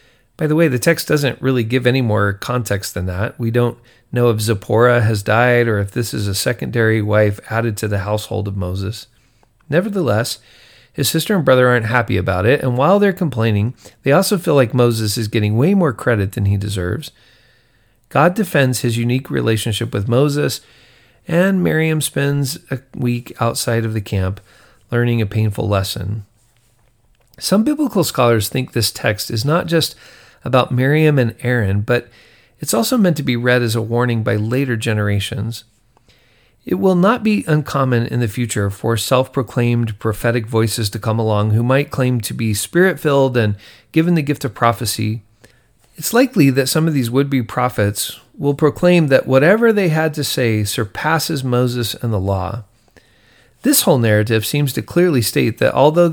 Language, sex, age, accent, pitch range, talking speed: English, male, 40-59, American, 110-140 Hz, 175 wpm